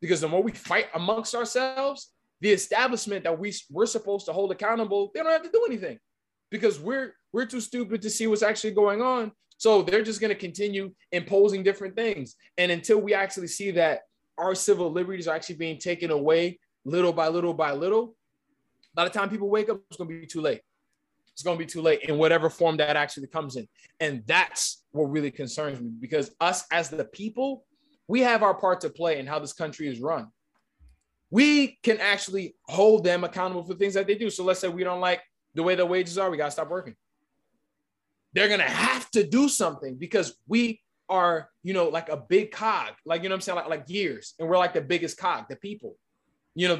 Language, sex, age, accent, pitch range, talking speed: English, male, 20-39, American, 165-215 Hz, 215 wpm